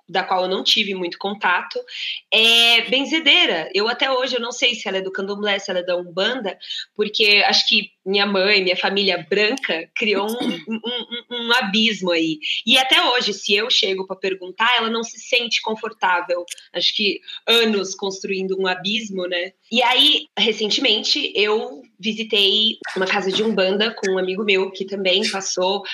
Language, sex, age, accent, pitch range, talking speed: Portuguese, female, 20-39, Brazilian, 190-240 Hz, 170 wpm